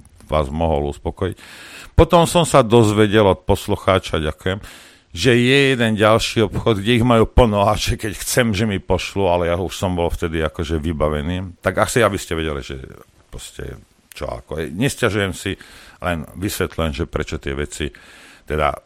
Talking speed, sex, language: 155 wpm, male, Slovak